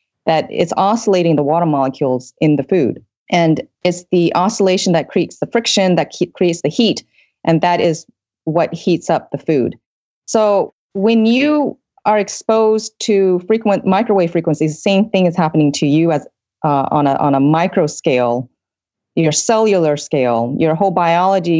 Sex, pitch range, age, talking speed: female, 160-205 Hz, 30-49, 165 wpm